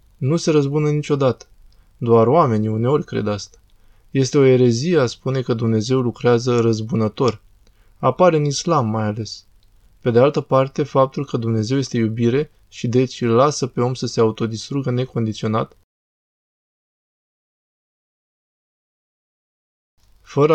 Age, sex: 20-39, male